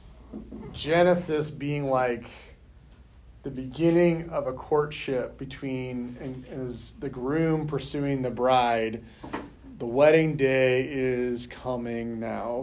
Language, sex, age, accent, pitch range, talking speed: English, male, 30-49, American, 115-145 Hz, 100 wpm